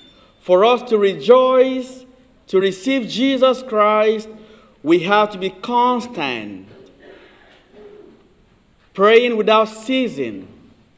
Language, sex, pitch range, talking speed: English, male, 185-240 Hz, 85 wpm